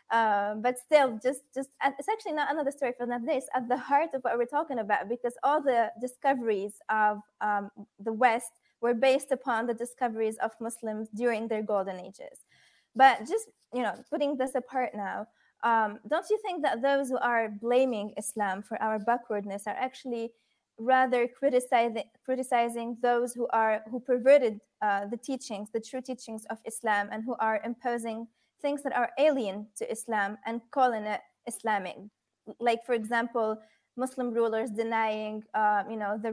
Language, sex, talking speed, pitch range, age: English, female, 170 wpm, 215-255 Hz, 20-39